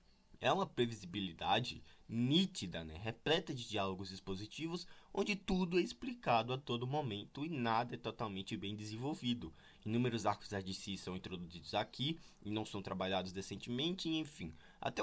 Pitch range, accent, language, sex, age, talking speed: 95-130 Hz, Brazilian, Portuguese, male, 20-39, 145 wpm